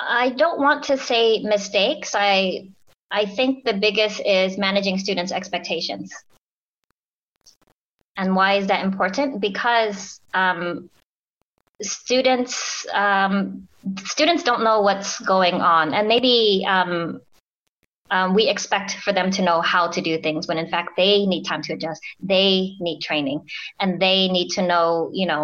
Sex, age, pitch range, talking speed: female, 20-39, 175-210 Hz, 145 wpm